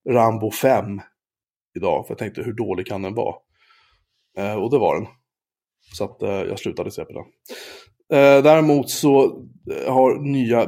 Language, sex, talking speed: Swedish, male, 165 wpm